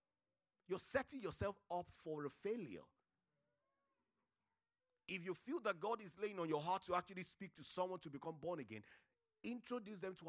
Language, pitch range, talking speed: English, 125-185 Hz, 170 wpm